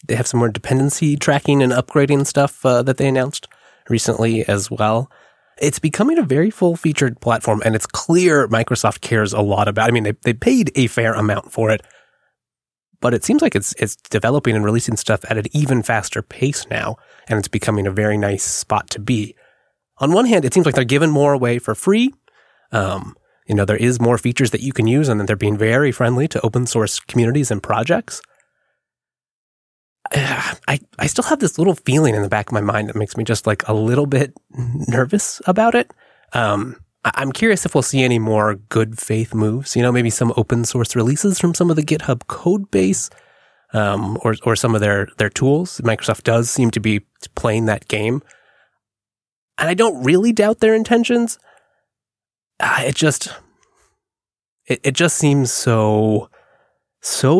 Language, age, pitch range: English, 30-49, 110-145 Hz